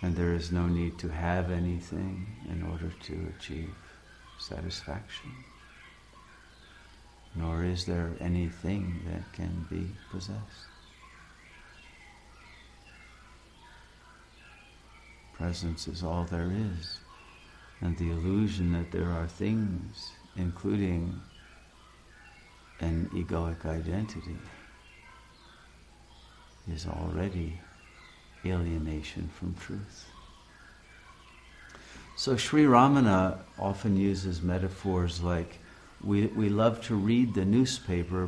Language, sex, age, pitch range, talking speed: English, male, 60-79, 85-95 Hz, 90 wpm